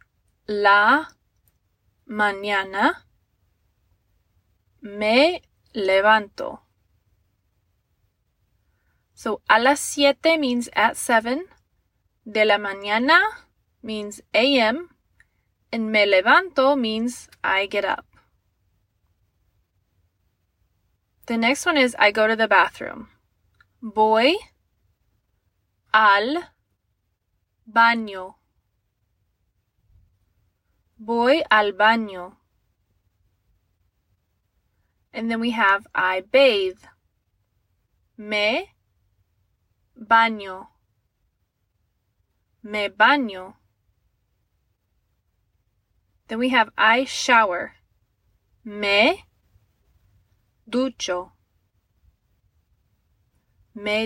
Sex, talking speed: female, 60 wpm